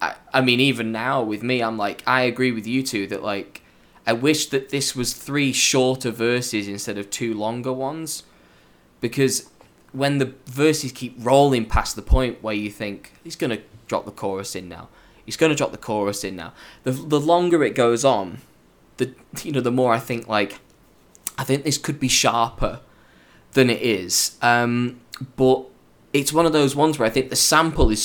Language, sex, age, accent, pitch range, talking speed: English, male, 10-29, British, 110-130 Hz, 195 wpm